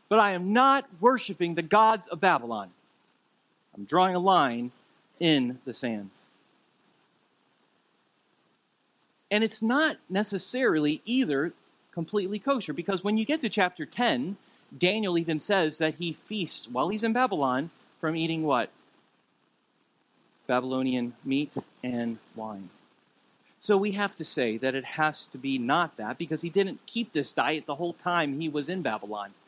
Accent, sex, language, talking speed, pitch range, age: American, male, English, 145 wpm, 125-195 Hz, 40-59